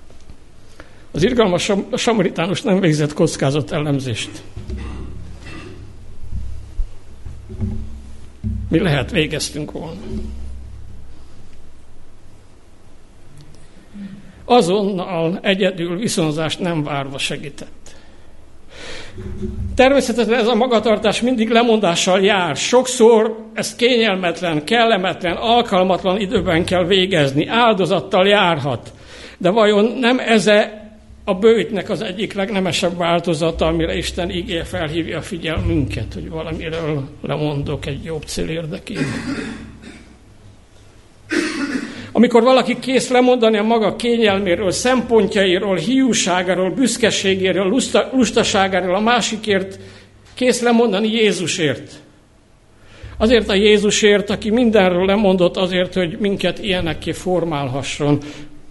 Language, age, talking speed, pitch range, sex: Hungarian, 60-79, 85 wpm, 140-215 Hz, male